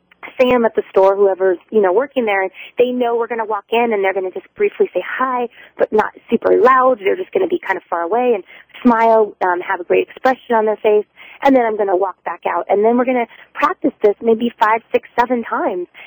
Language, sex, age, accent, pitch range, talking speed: English, female, 30-49, American, 200-255 Hz, 245 wpm